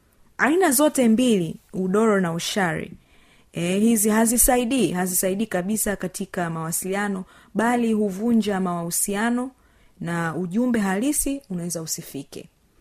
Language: Swahili